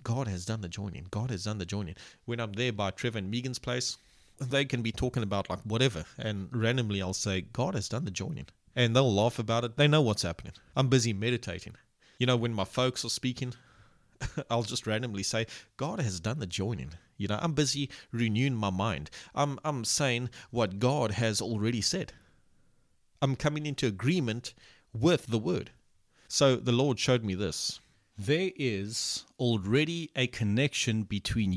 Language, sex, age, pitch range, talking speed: English, male, 30-49, 110-135 Hz, 180 wpm